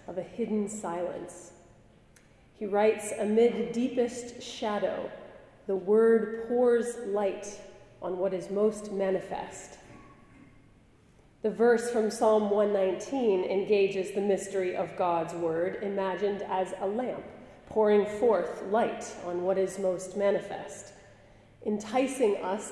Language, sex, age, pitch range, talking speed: English, female, 30-49, 190-225 Hz, 115 wpm